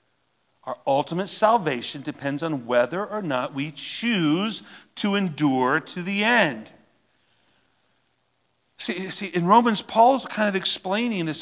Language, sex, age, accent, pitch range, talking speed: English, male, 40-59, American, 170-245 Hz, 125 wpm